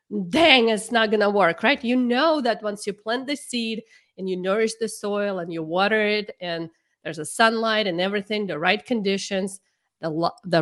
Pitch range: 180-235 Hz